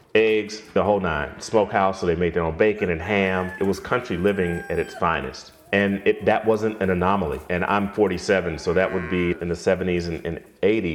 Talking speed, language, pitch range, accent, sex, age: 205 wpm, English, 85-95 Hz, American, male, 30-49